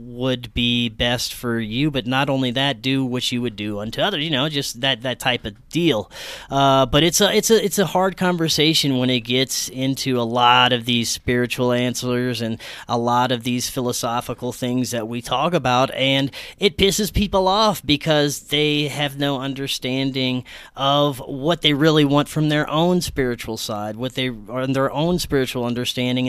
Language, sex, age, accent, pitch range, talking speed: English, male, 30-49, American, 125-160 Hz, 185 wpm